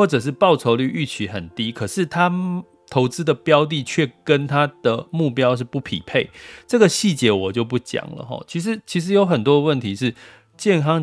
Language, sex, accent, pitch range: Chinese, male, native, 110-155 Hz